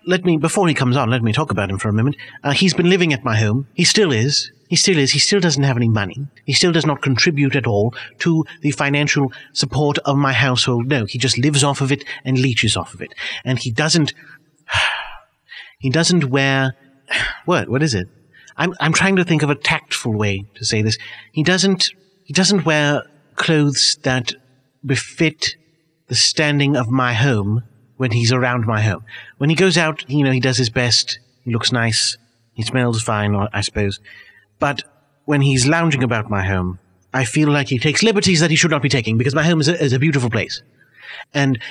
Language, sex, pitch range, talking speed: English, male, 120-150 Hz, 210 wpm